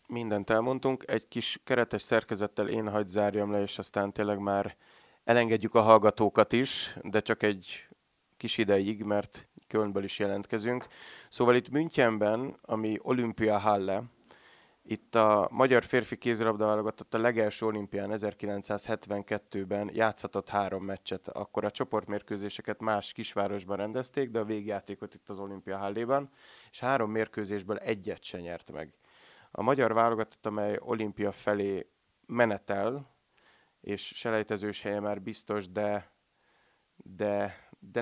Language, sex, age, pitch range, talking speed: Hungarian, male, 30-49, 100-115 Hz, 125 wpm